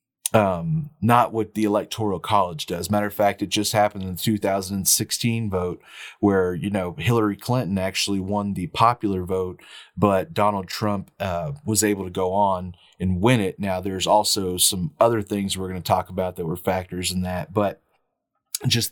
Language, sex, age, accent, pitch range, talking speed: English, male, 30-49, American, 95-110 Hz, 180 wpm